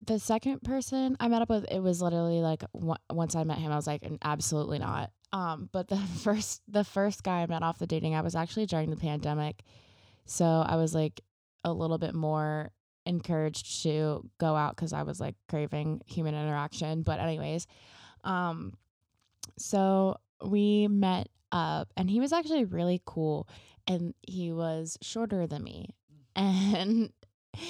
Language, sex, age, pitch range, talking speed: English, female, 20-39, 155-190 Hz, 170 wpm